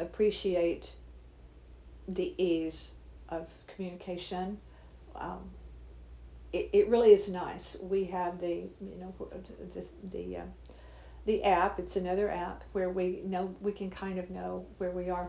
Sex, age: female, 50-69